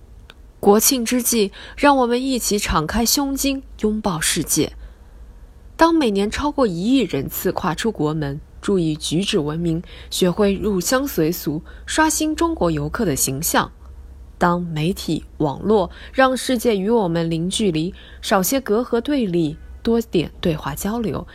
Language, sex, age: Chinese, female, 20-39